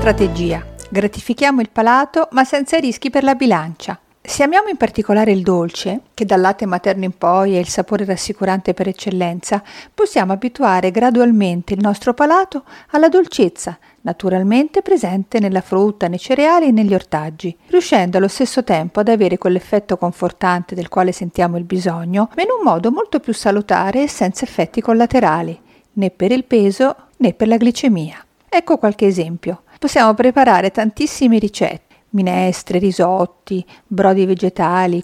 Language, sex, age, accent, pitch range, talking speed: Italian, female, 50-69, native, 185-245 Hz, 150 wpm